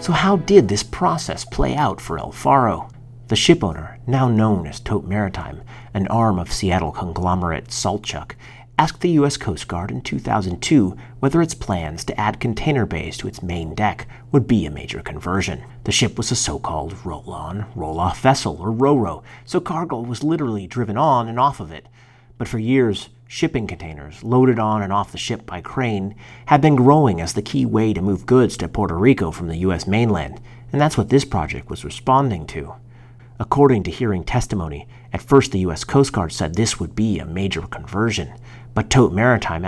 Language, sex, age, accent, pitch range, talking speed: English, male, 40-59, American, 95-125 Hz, 190 wpm